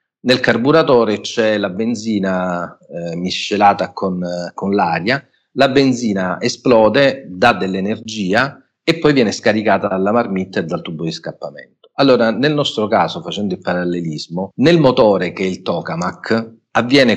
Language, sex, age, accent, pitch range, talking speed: Italian, male, 40-59, native, 90-120 Hz, 145 wpm